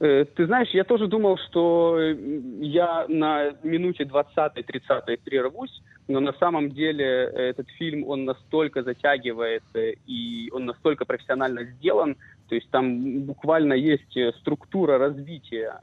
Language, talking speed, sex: Russian, 120 wpm, male